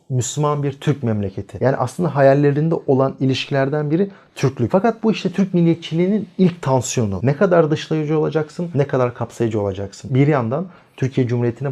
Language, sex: Turkish, male